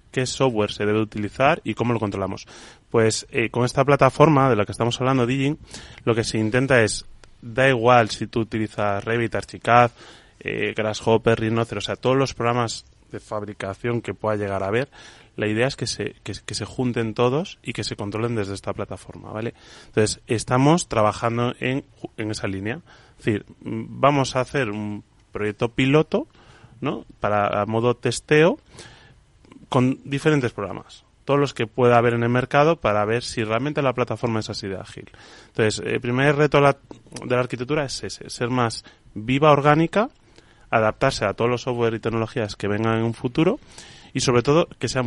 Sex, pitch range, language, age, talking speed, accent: male, 110-135 Hz, Spanish, 20-39, 180 wpm, Spanish